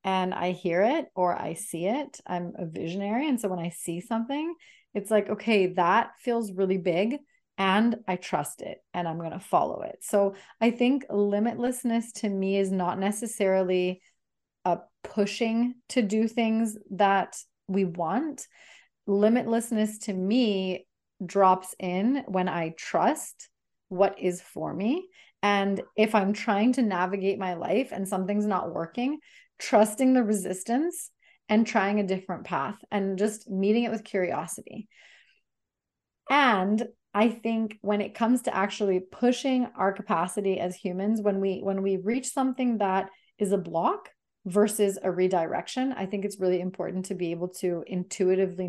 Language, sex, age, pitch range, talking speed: English, female, 30-49, 185-230 Hz, 155 wpm